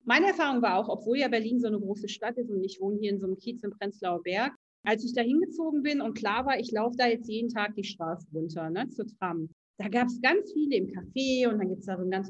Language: German